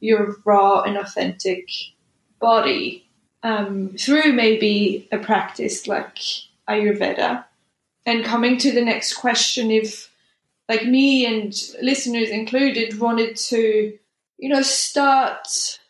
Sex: female